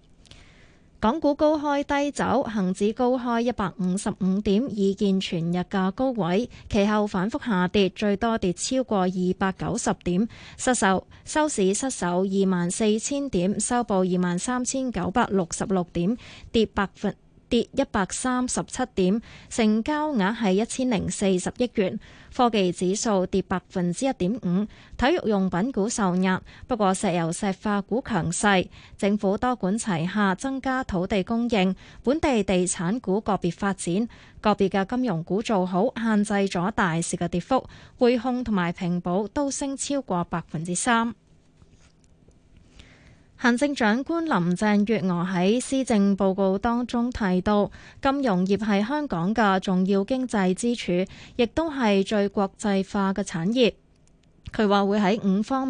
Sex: female